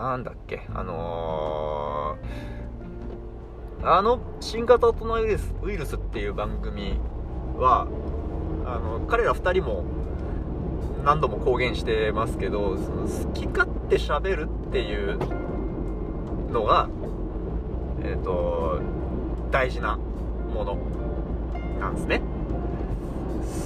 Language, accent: Japanese, native